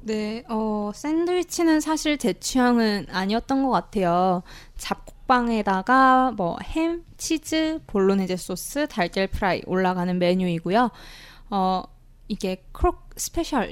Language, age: Korean, 20-39